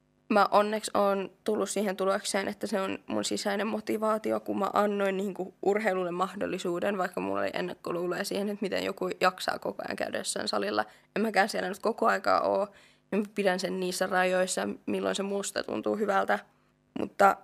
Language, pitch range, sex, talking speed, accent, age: Finnish, 180-205 Hz, female, 170 wpm, native, 20-39